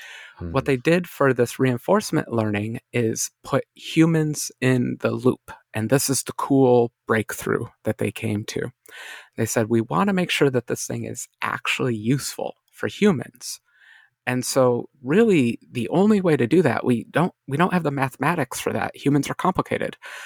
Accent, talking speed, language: American, 175 wpm, English